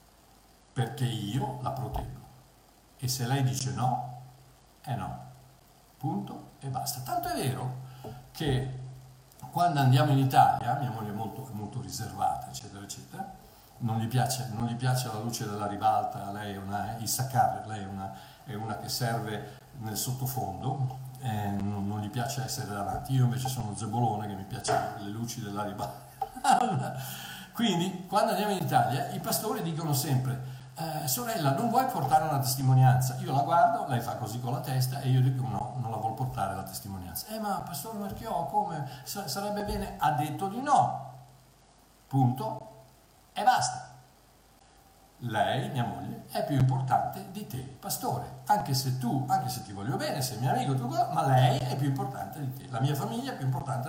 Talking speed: 175 wpm